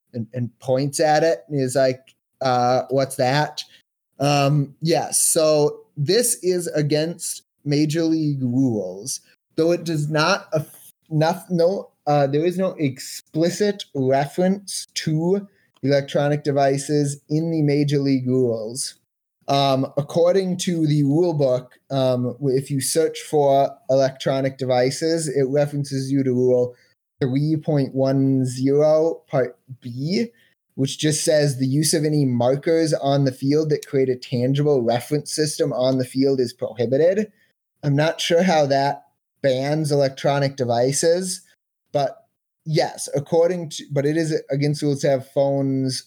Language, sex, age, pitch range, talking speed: English, male, 20-39, 130-155 Hz, 135 wpm